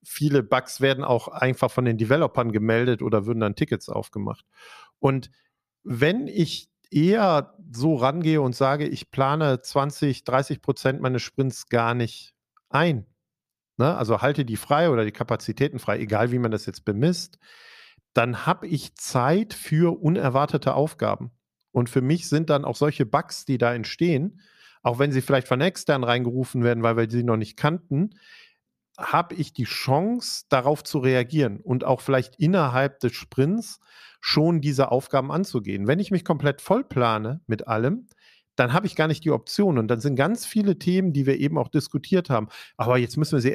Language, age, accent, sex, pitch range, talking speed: German, 50-69, German, male, 125-160 Hz, 175 wpm